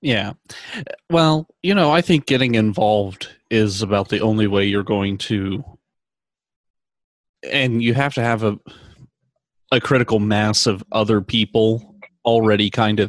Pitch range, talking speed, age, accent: 105-115 Hz, 140 wpm, 30-49, American